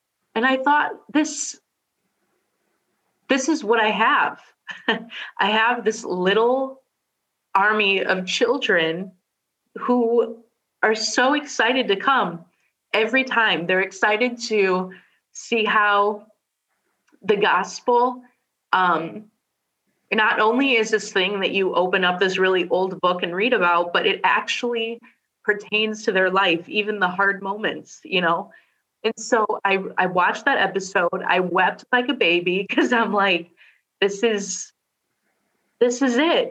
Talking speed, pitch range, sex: 135 wpm, 190-245 Hz, female